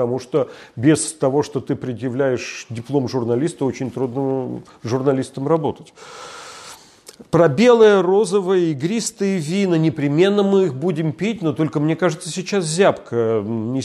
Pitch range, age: 125-170 Hz, 40-59